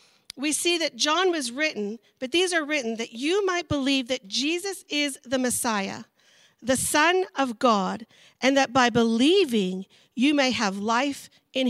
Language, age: English, 40-59